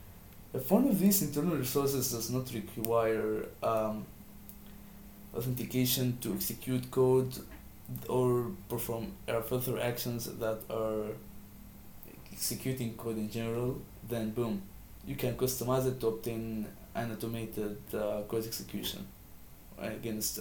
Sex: male